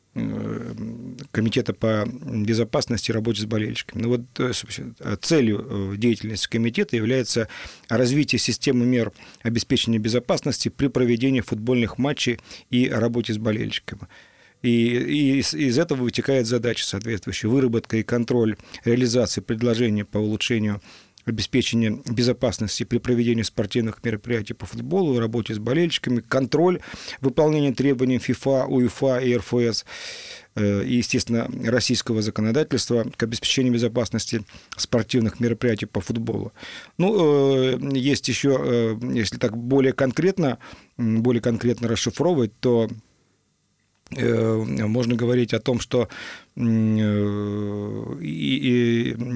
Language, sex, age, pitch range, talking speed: Russian, male, 40-59, 110-130 Hz, 105 wpm